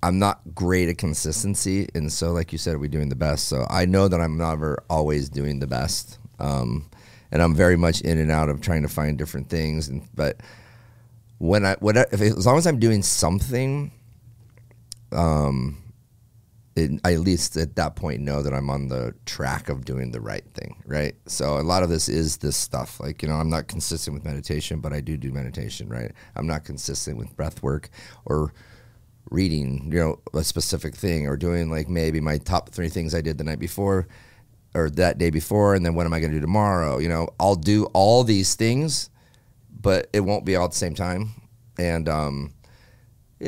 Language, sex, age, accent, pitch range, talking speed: English, male, 30-49, American, 80-115 Hz, 210 wpm